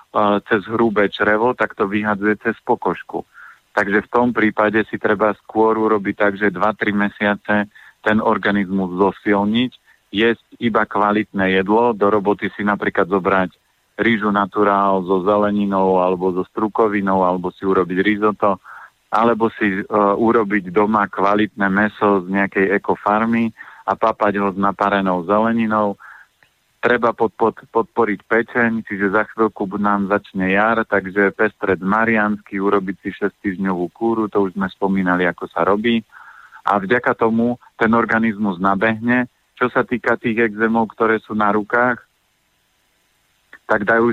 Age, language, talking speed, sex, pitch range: 50-69, Slovak, 140 wpm, male, 100-110 Hz